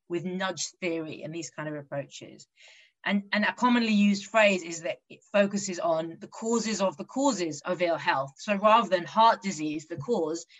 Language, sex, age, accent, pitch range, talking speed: English, female, 20-39, British, 165-210 Hz, 190 wpm